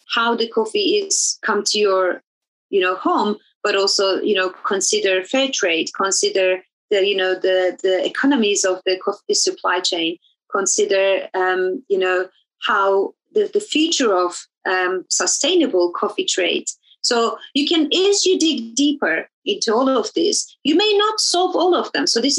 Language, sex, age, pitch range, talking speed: English, female, 30-49, 195-325 Hz, 165 wpm